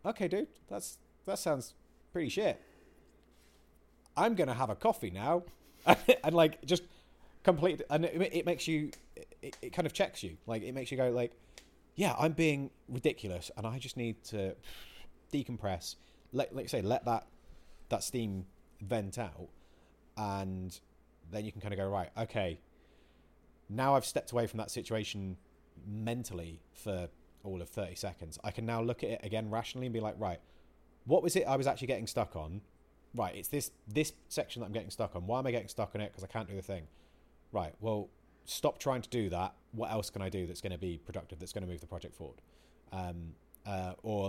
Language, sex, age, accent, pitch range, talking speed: English, male, 30-49, British, 90-120 Hz, 200 wpm